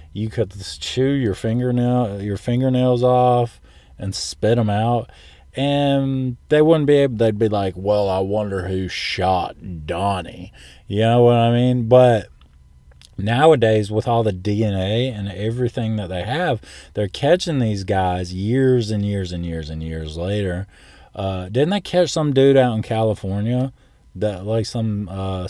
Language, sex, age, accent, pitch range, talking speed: English, male, 20-39, American, 90-120 Hz, 160 wpm